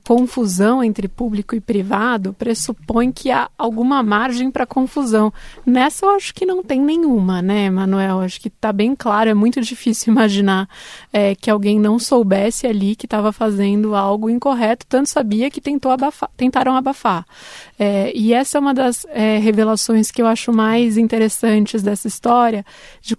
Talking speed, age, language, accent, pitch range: 155 wpm, 20-39, Portuguese, Brazilian, 215-250 Hz